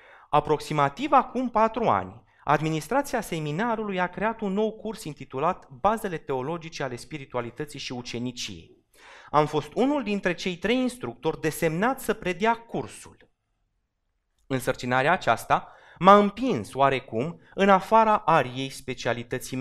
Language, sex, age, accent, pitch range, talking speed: Romanian, male, 30-49, native, 130-205 Hz, 120 wpm